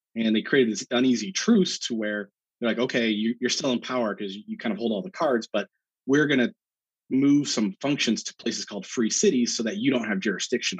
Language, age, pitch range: English, 30-49, 100-130 Hz